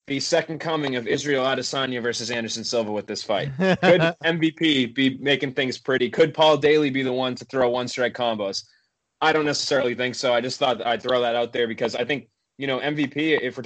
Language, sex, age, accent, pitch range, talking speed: English, male, 30-49, American, 120-135 Hz, 215 wpm